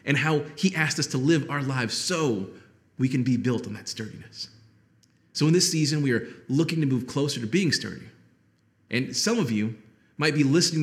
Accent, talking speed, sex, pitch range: American, 205 wpm, male, 120-165 Hz